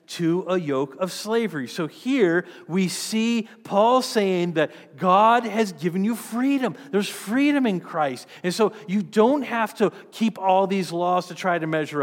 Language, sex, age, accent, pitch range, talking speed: English, male, 40-59, American, 145-210 Hz, 175 wpm